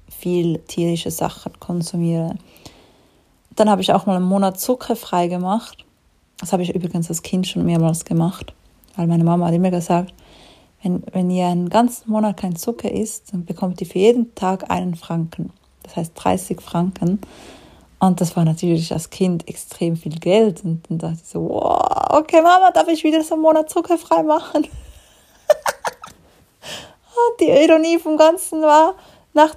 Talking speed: 165 wpm